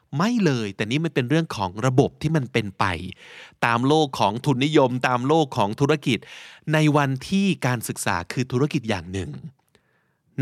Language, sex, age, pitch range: Thai, male, 20-39, 110-150 Hz